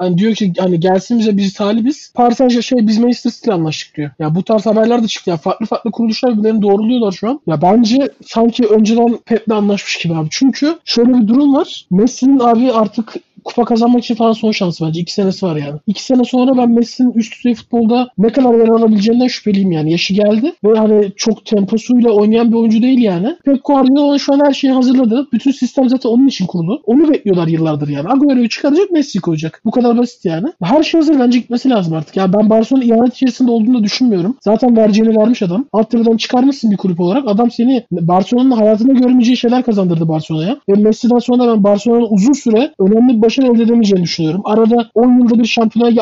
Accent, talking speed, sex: native, 200 wpm, male